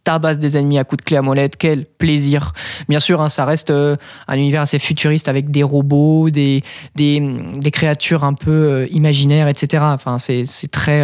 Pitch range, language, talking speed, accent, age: 140-175 Hz, French, 200 wpm, French, 20-39